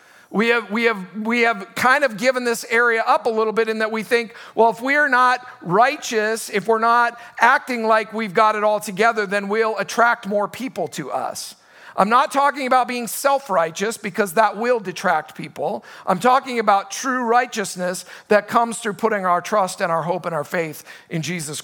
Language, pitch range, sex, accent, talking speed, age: English, 205-250 Hz, male, American, 195 wpm, 50-69